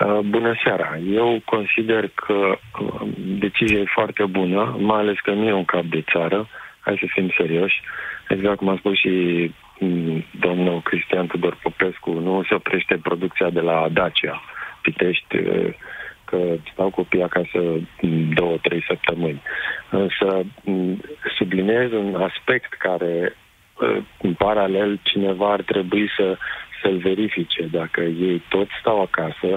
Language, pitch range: Romanian, 90-110 Hz